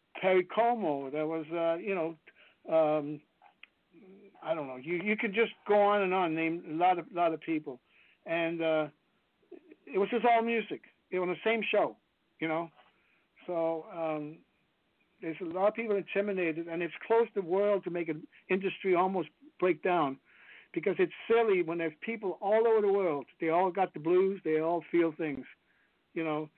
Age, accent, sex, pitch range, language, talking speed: 60-79, American, male, 165-200 Hz, English, 185 wpm